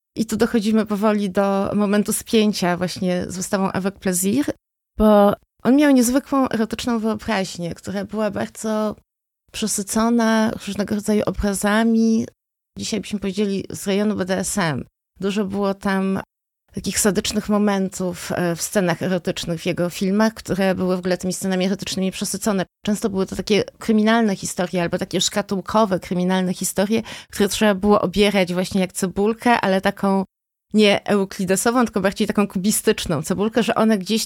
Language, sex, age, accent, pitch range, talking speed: Polish, female, 30-49, native, 185-215 Hz, 140 wpm